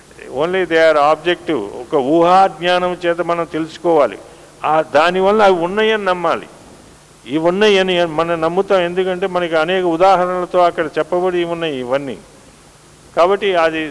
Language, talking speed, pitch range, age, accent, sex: Telugu, 135 wpm, 165-190 Hz, 50-69, native, male